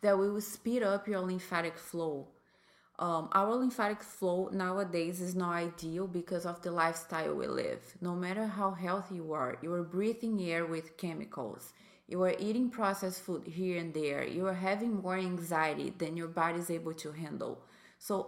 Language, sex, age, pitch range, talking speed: English, female, 20-39, 170-195 Hz, 180 wpm